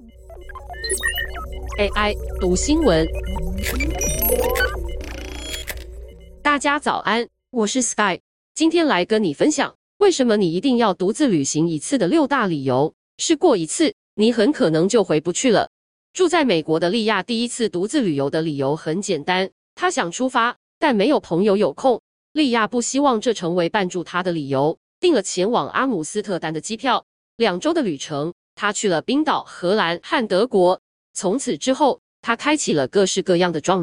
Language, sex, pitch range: Chinese, female, 175-260 Hz